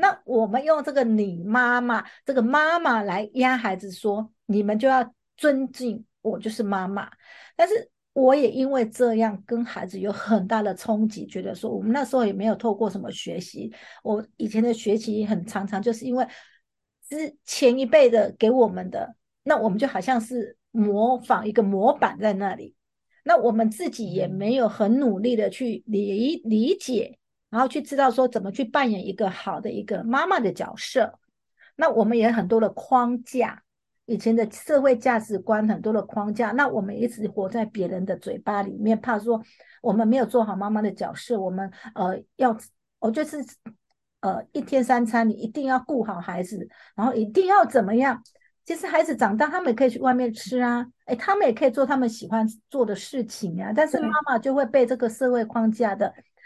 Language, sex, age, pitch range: English, female, 50-69, 215-260 Hz